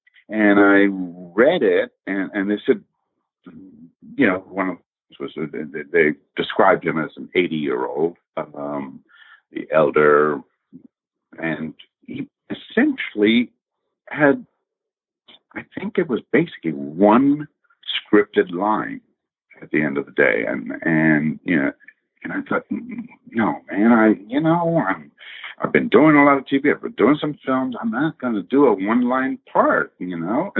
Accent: American